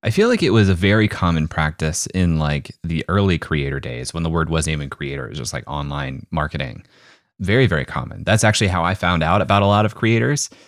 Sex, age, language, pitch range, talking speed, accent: male, 30-49, English, 80-110 Hz, 230 wpm, American